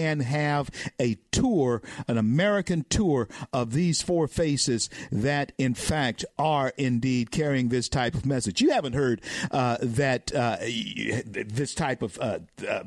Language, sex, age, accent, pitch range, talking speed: English, male, 50-69, American, 115-145 Hz, 150 wpm